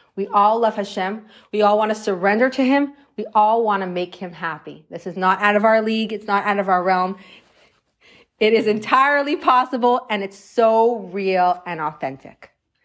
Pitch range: 180-230 Hz